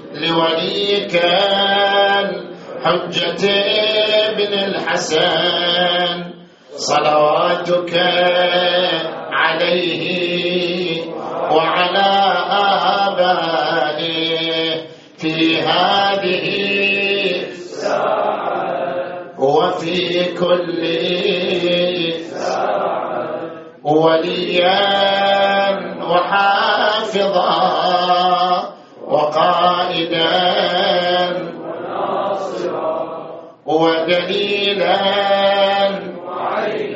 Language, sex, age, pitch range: Arabic, male, 40-59, 160-180 Hz